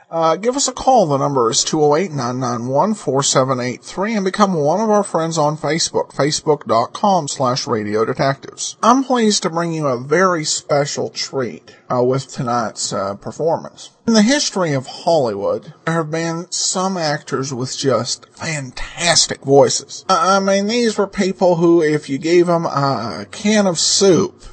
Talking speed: 155 wpm